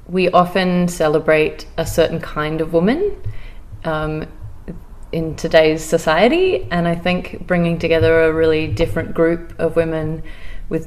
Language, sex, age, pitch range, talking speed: Czech, female, 30-49, 155-165 Hz, 130 wpm